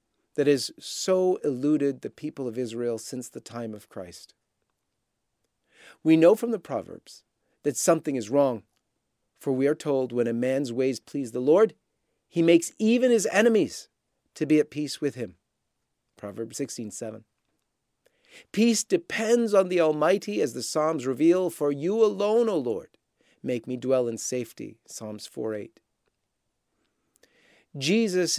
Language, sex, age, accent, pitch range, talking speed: English, male, 40-59, American, 125-170 Hz, 150 wpm